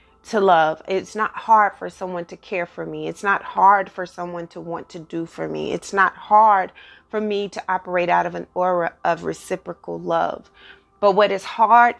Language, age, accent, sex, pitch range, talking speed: English, 30-49, American, female, 175-210 Hz, 200 wpm